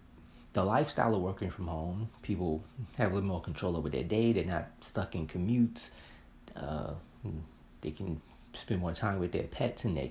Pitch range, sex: 90-125 Hz, male